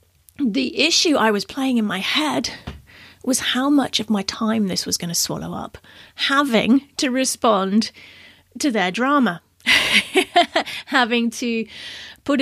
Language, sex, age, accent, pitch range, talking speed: English, female, 40-59, British, 205-290 Hz, 140 wpm